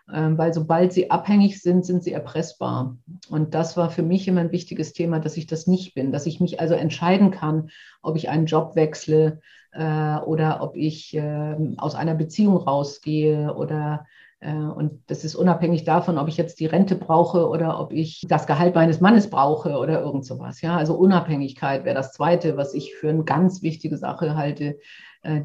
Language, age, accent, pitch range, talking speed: German, 50-69, German, 155-185 Hz, 190 wpm